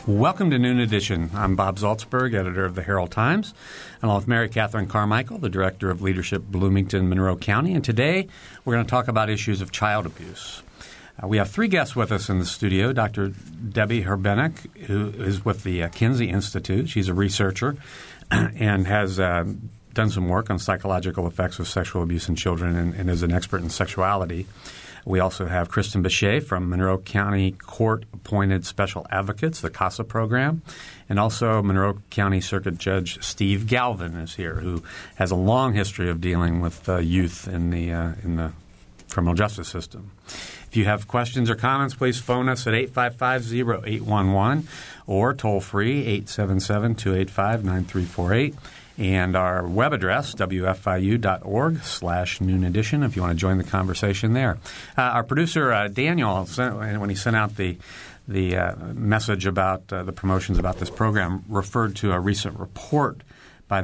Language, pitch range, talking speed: English, 95-115 Hz, 165 wpm